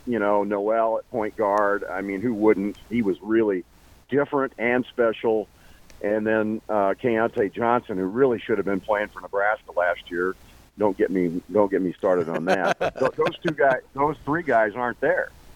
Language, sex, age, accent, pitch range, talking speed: English, male, 50-69, American, 95-120 Hz, 195 wpm